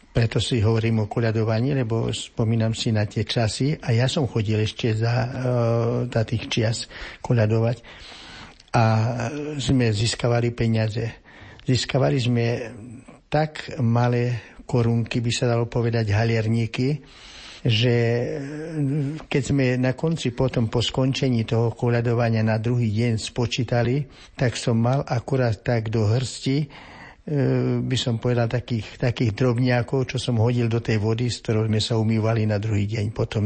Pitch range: 115-125 Hz